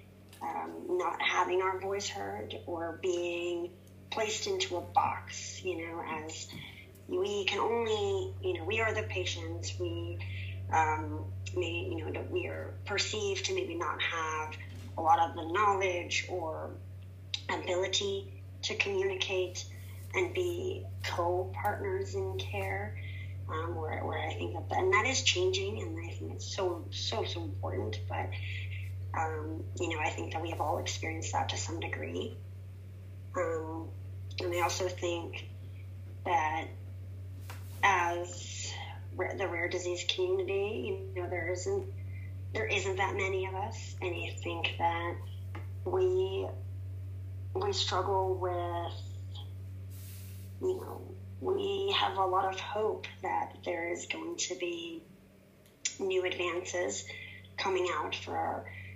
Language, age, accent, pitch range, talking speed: English, 30-49, American, 95-110 Hz, 135 wpm